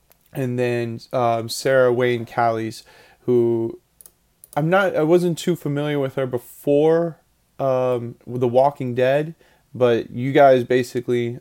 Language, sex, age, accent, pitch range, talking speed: English, male, 20-39, American, 115-135 Hz, 125 wpm